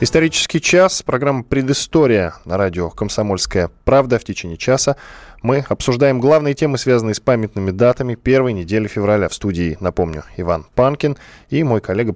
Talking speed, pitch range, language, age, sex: 150 wpm, 95-130 Hz, Russian, 10-29, male